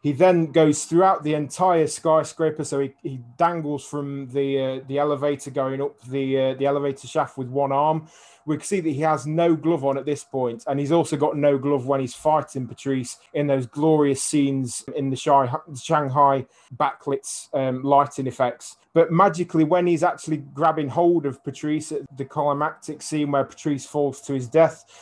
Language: English